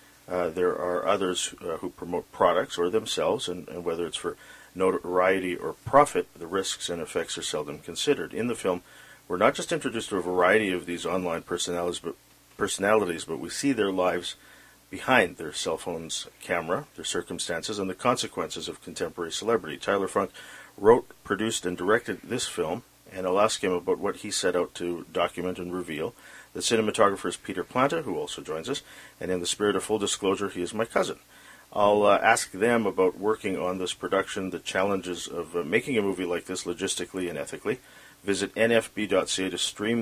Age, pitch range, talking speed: 50-69, 90-100 Hz, 185 wpm